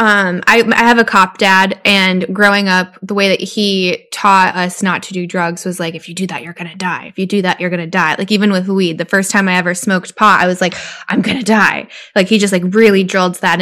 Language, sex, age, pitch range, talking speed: English, female, 10-29, 185-225 Hz, 280 wpm